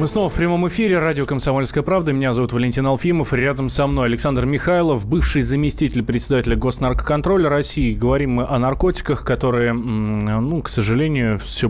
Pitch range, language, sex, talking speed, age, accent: 115-155 Hz, Russian, male, 160 wpm, 20-39, native